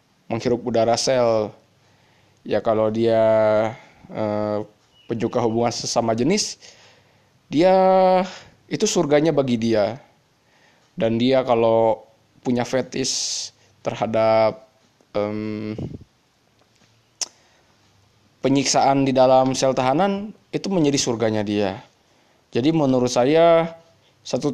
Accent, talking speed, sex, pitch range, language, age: native, 90 wpm, male, 110-145 Hz, Indonesian, 20-39